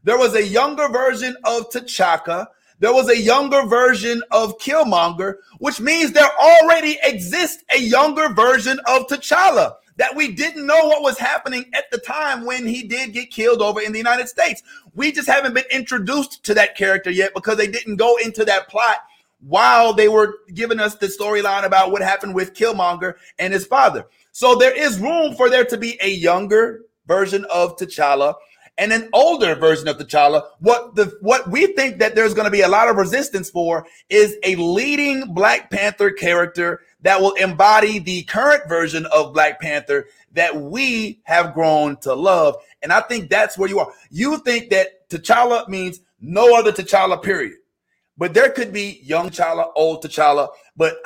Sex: male